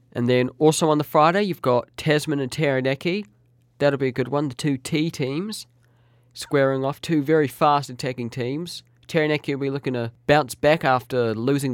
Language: English